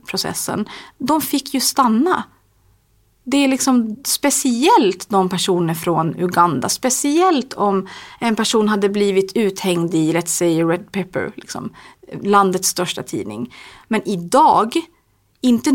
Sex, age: female, 30-49